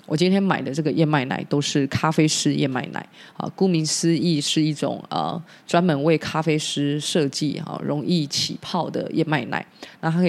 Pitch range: 140-170 Hz